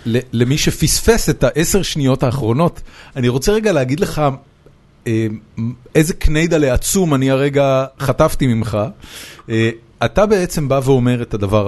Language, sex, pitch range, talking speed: Hebrew, male, 105-140 Hz, 130 wpm